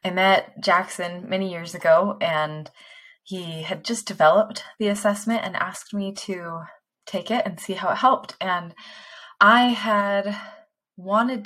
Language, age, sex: English, 20-39, female